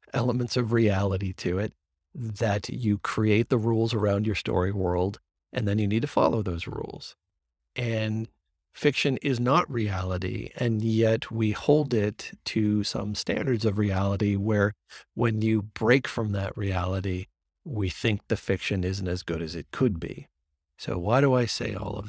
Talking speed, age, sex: 170 wpm, 40-59, male